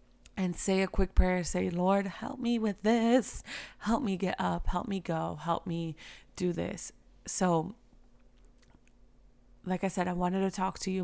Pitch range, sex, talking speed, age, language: 160-205 Hz, female, 175 wpm, 20-39, English